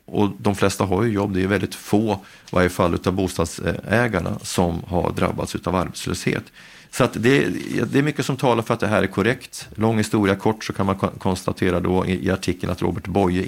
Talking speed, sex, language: 200 wpm, male, Swedish